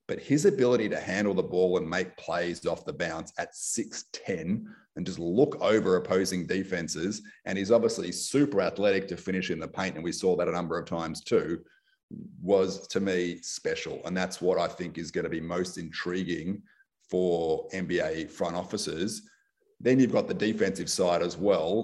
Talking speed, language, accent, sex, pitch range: 185 wpm, English, Australian, male, 90-105 Hz